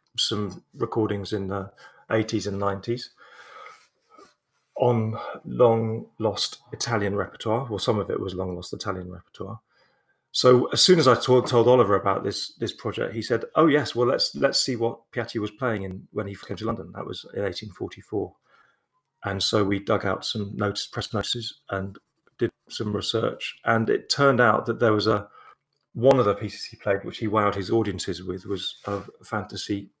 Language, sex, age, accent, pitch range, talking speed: English, male, 30-49, British, 100-120 Hz, 180 wpm